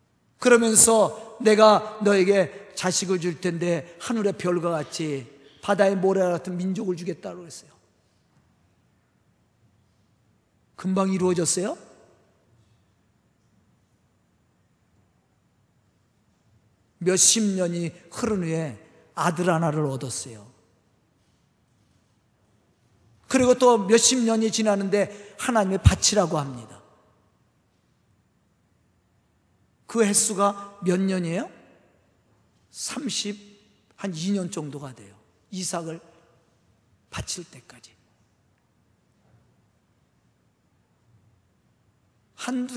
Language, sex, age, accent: Korean, male, 40-59, native